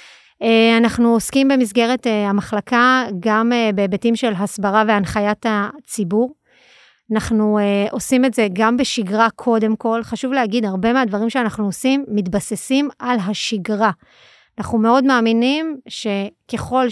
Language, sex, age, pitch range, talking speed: Hebrew, female, 30-49, 210-240 Hz, 125 wpm